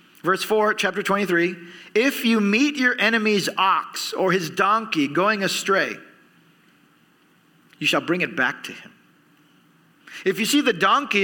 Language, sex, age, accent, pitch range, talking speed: English, male, 40-59, American, 175-235 Hz, 145 wpm